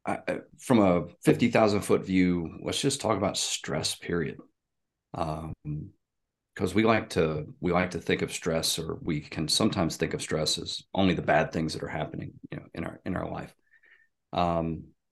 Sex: male